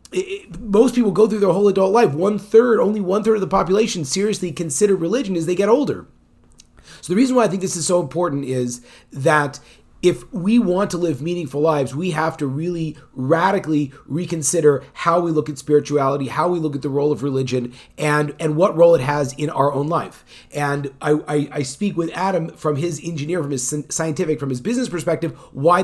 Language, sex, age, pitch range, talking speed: English, male, 30-49, 140-170 Hz, 205 wpm